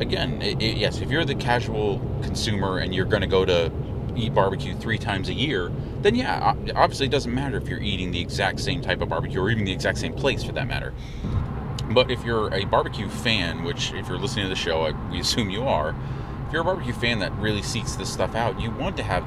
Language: English